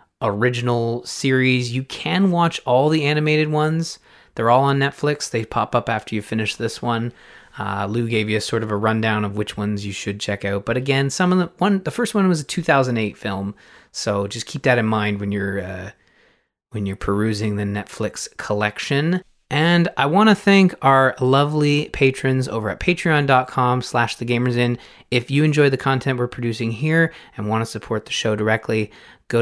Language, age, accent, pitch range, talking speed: English, 30-49, American, 110-145 Hz, 195 wpm